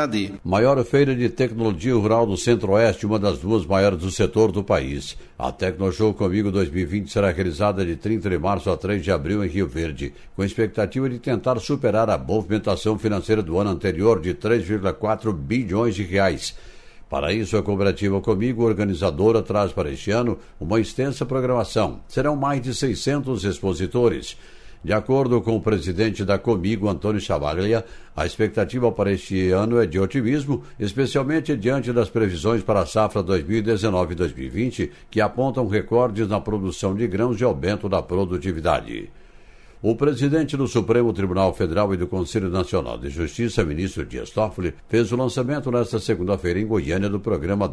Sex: male